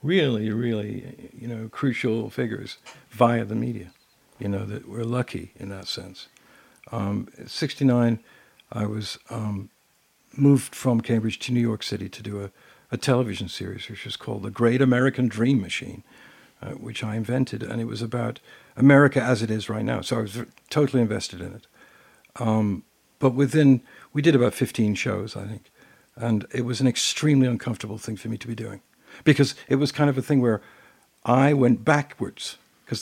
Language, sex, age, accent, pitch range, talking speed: English, male, 60-79, American, 110-130 Hz, 180 wpm